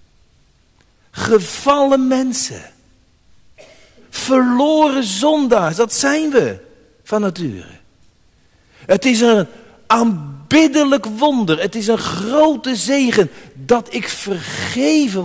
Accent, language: Dutch, Dutch